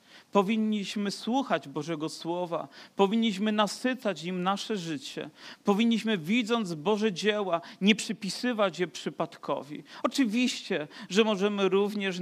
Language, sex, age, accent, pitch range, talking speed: Polish, male, 40-59, native, 145-200 Hz, 105 wpm